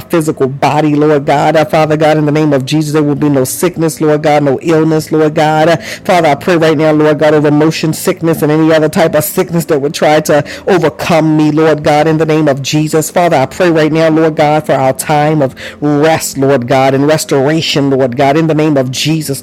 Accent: American